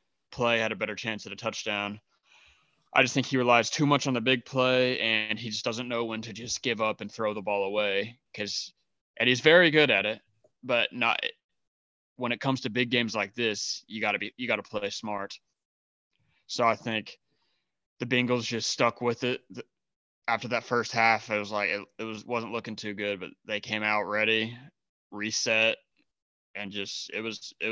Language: English